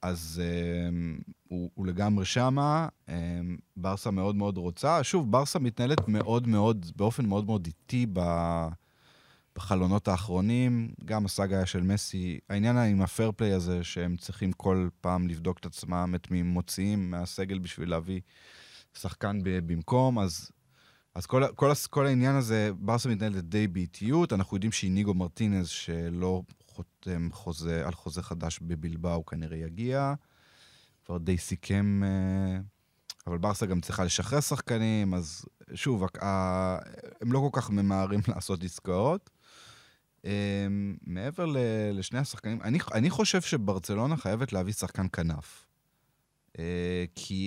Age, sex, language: 20-39, male, Hebrew